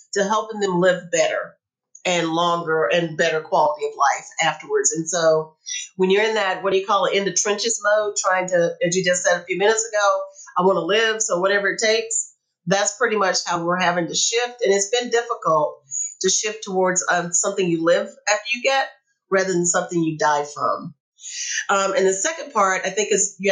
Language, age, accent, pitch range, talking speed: English, 40-59, American, 170-215 Hz, 210 wpm